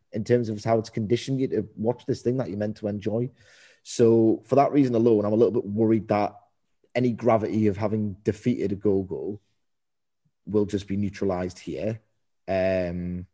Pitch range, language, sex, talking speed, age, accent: 100-120 Hz, English, male, 180 wpm, 30-49, British